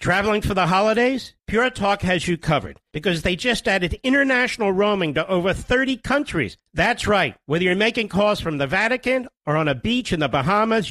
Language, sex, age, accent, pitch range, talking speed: English, male, 50-69, American, 180-235 Hz, 195 wpm